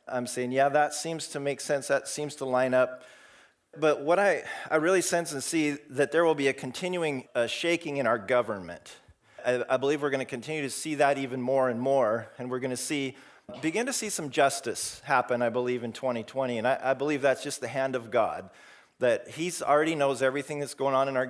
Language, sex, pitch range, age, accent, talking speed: English, male, 130-150 Hz, 40-59, American, 225 wpm